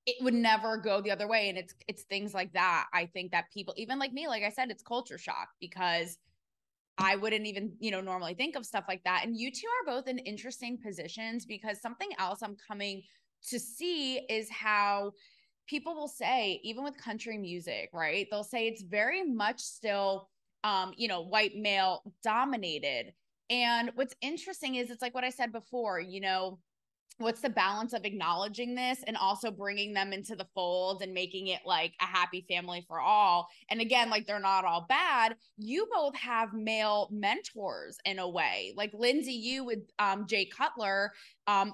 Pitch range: 195-255 Hz